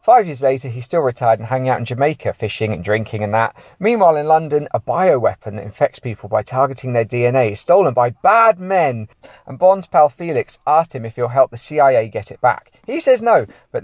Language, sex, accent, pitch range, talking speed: English, male, British, 120-160 Hz, 220 wpm